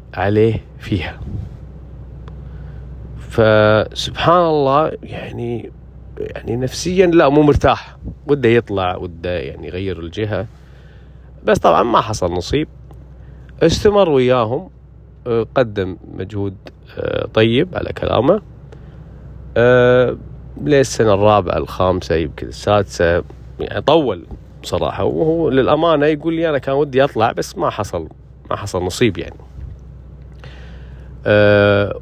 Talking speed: 95 wpm